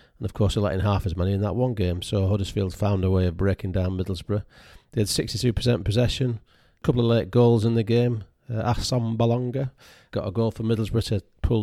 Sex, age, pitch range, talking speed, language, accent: male, 40-59, 100-115 Hz, 220 wpm, English, British